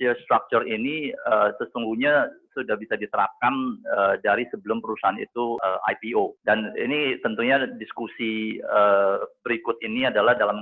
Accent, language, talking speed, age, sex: Indonesian, English, 130 wpm, 30-49, male